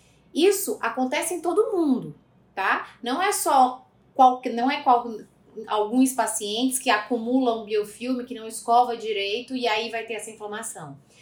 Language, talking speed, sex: Portuguese, 150 wpm, female